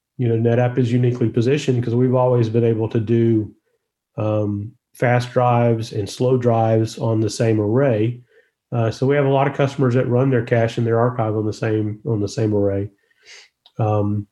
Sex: male